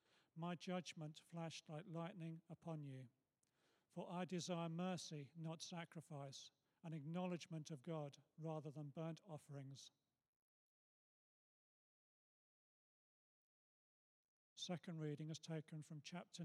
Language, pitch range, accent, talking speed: English, 150-175 Hz, British, 100 wpm